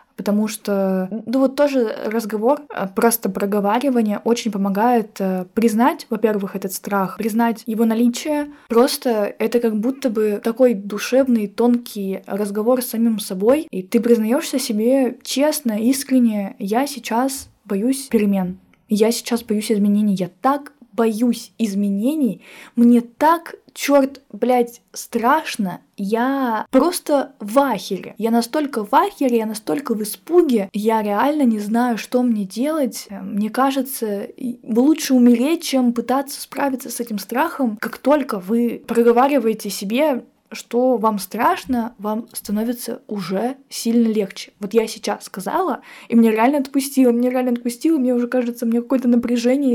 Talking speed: 135 wpm